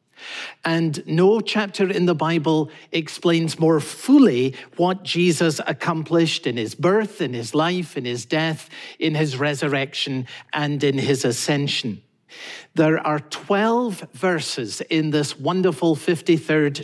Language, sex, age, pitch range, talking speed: English, male, 50-69, 145-175 Hz, 130 wpm